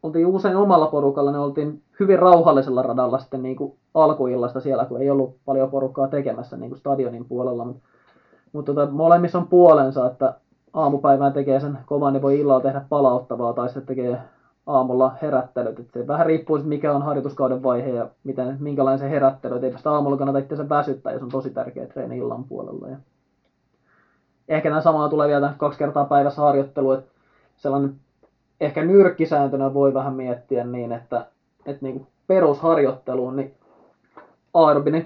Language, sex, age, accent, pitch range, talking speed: Finnish, male, 20-39, native, 130-145 Hz, 160 wpm